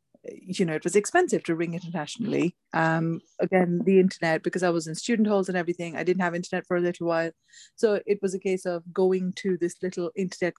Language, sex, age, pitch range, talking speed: English, female, 30-49, 170-190 Hz, 220 wpm